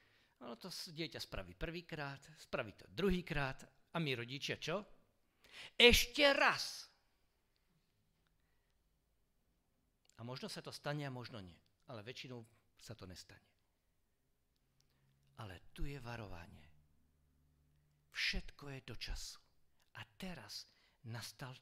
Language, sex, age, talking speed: Slovak, male, 50-69, 110 wpm